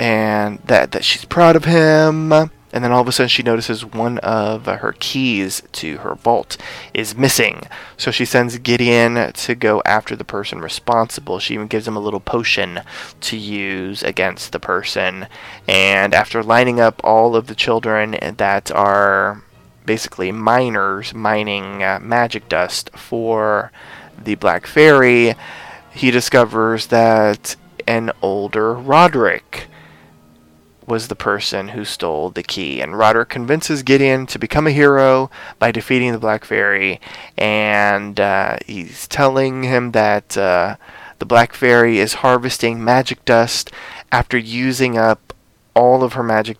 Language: English